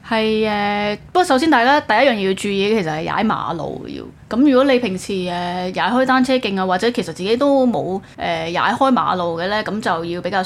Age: 20-39